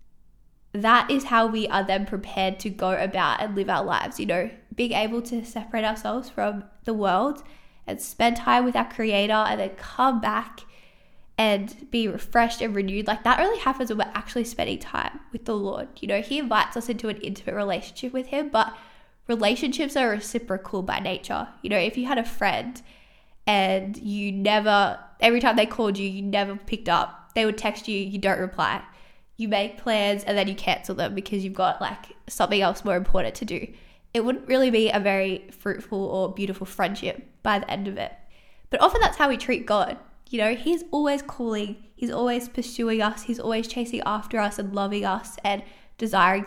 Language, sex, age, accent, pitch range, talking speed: English, female, 10-29, Australian, 200-240 Hz, 200 wpm